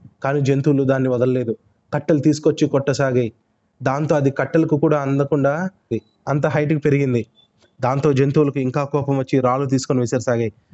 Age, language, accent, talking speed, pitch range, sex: 20-39, Telugu, native, 130 wpm, 130-170 Hz, male